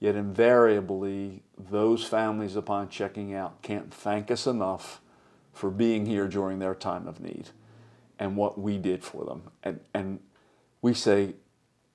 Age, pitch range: 40-59, 105-135 Hz